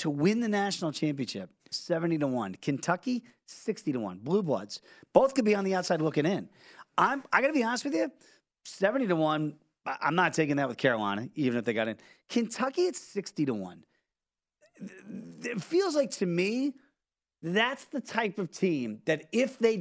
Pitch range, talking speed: 150-220 Hz, 190 wpm